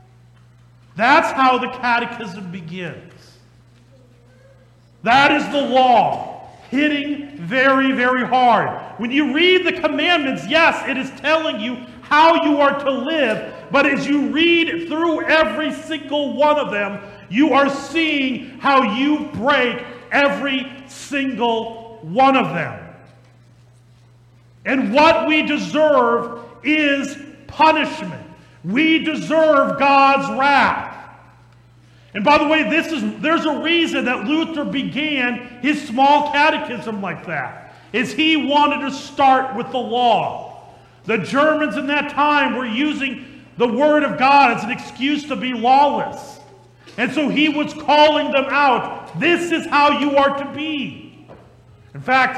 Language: English